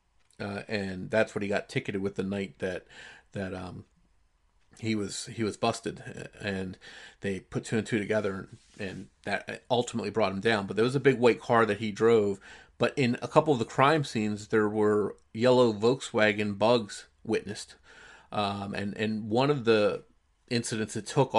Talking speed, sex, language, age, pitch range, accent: 180 wpm, male, English, 30-49, 100-115 Hz, American